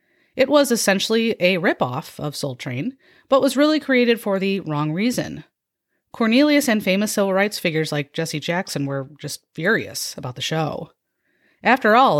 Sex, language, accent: female, English, American